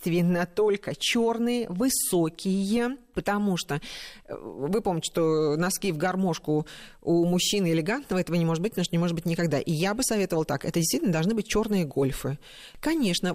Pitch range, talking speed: 160-210 Hz, 165 wpm